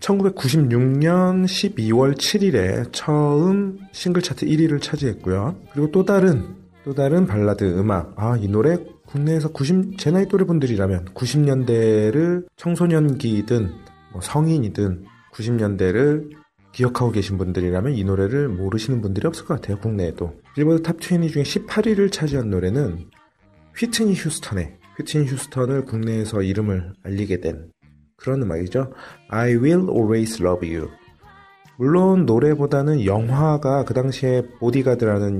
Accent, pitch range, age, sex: native, 100-155 Hz, 30-49, male